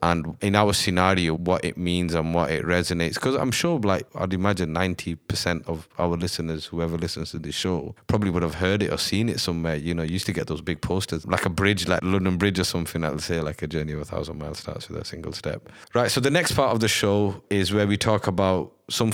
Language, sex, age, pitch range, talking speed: English, male, 30-49, 85-105 Hz, 250 wpm